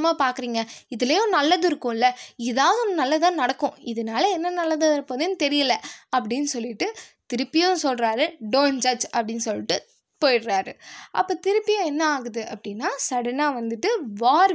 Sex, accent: female, native